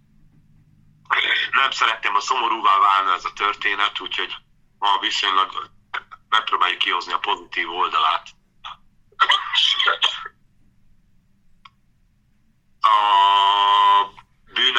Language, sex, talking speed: Hungarian, male, 75 wpm